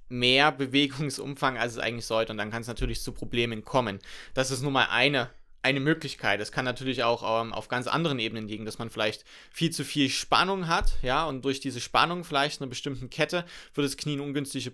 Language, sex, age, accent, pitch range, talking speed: German, male, 20-39, German, 120-150 Hz, 215 wpm